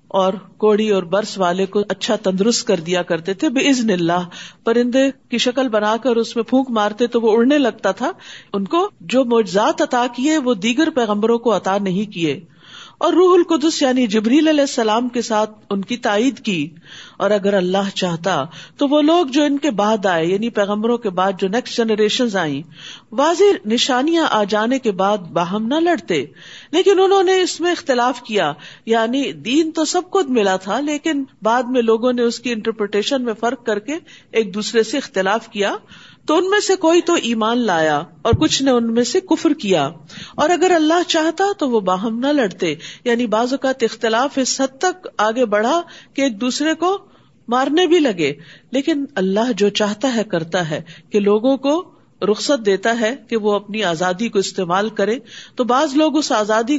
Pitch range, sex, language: 200-275 Hz, female, Urdu